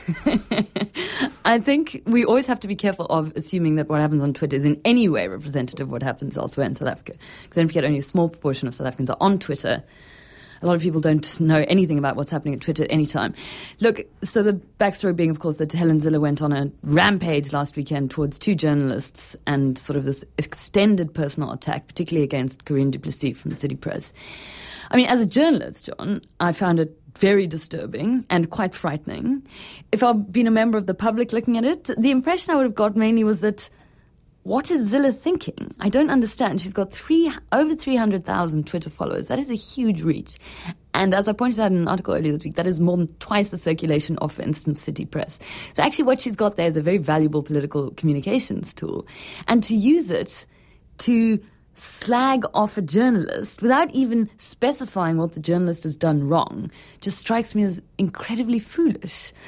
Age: 30-49